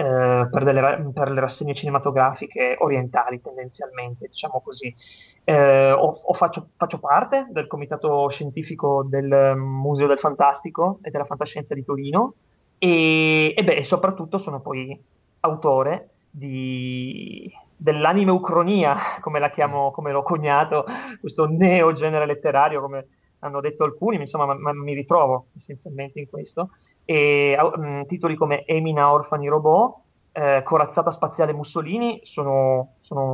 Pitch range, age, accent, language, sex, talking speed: 140-170 Hz, 30-49, native, Italian, male, 125 wpm